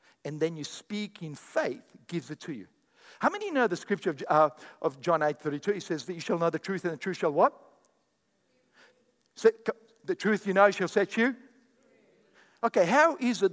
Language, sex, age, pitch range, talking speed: English, male, 50-69, 210-275 Hz, 210 wpm